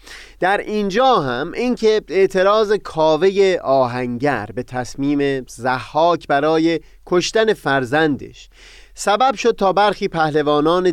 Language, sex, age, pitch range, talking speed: Persian, male, 30-49, 130-195 Hz, 100 wpm